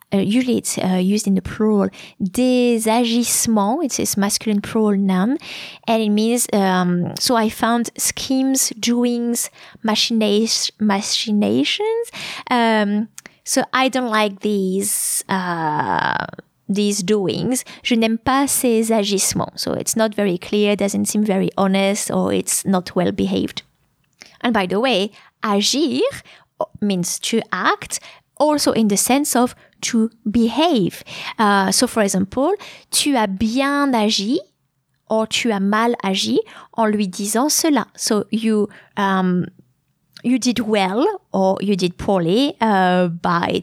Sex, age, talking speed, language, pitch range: female, 20-39, 135 wpm, English, 195-245 Hz